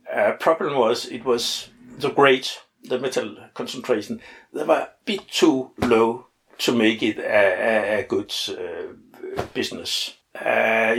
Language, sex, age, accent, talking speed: English, male, 60-79, Danish, 145 wpm